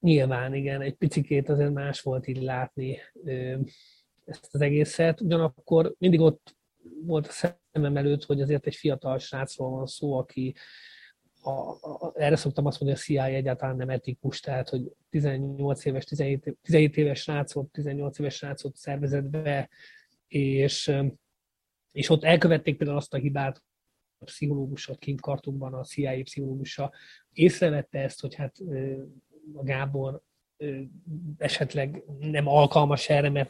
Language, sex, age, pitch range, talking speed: Hungarian, male, 30-49, 135-155 Hz, 140 wpm